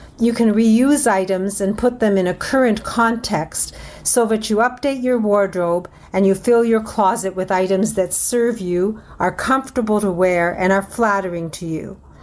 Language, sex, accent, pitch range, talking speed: English, female, American, 185-230 Hz, 175 wpm